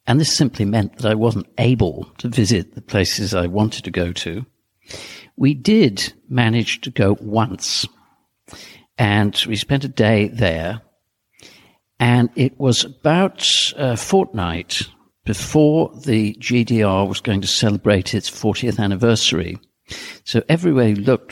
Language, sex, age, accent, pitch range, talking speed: English, male, 50-69, British, 100-125 Hz, 140 wpm